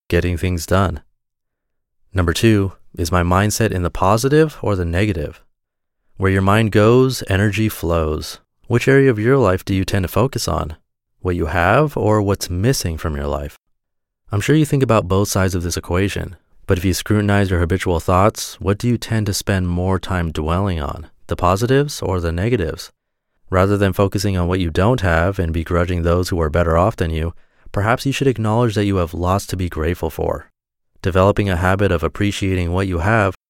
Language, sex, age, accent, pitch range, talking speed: English, male, 30-49, American, 85-110 Hz, 195 wpm